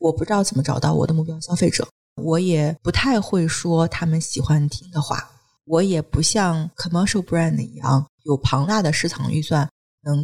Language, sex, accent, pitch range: Chinese, female, native, 150-195 Hz